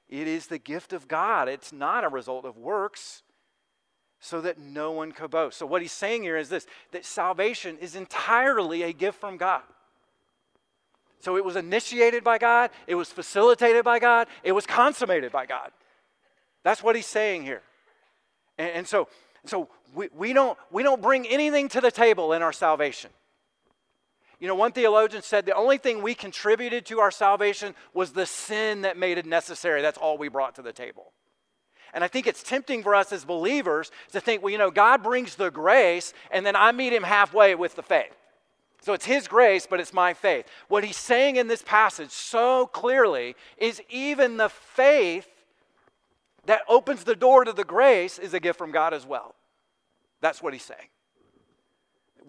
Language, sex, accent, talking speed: English, male, American, 185 wpm